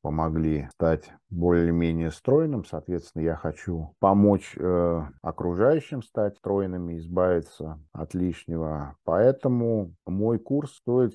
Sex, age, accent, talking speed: male, 50-69, native, 100 wpm